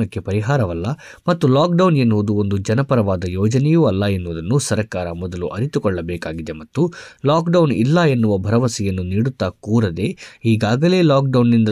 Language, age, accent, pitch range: Kannada, 20-39, native, 95-125 Hz